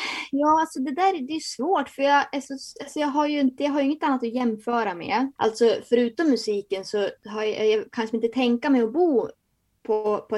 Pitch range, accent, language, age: 205-255 Hz, native, Swedish, 20-39